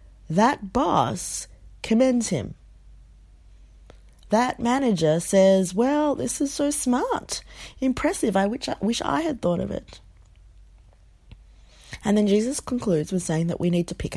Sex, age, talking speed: female, 40-59, 135 wpm